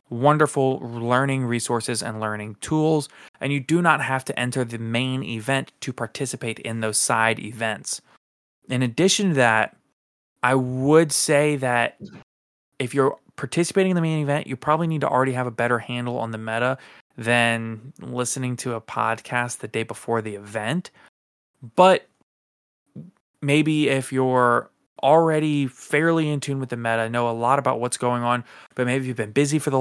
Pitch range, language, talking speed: 120-145 Hz, English, 170 wpm